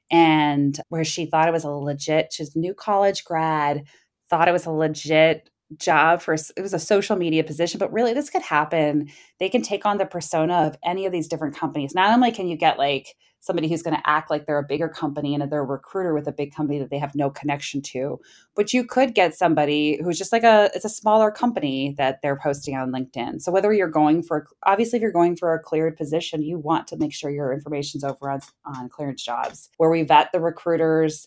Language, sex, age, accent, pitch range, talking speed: English, female, 20-39, American, 145-185 Hz, 230 wpm